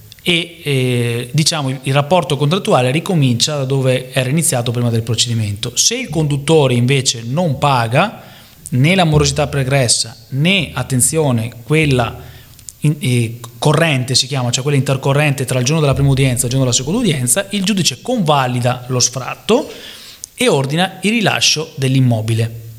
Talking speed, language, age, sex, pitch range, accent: 150 wpm, English, 30-49, male, 120-155 Hz, Italian